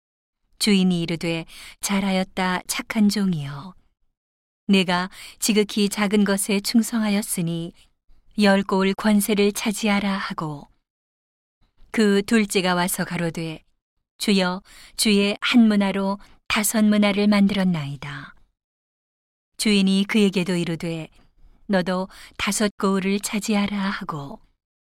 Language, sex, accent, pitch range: Korean, female, native, 175-205 Hz